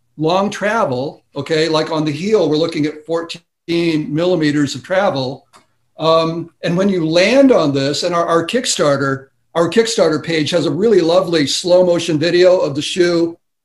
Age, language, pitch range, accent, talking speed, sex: 60-79, English, 155-190 Hz, American, 165 wpm, male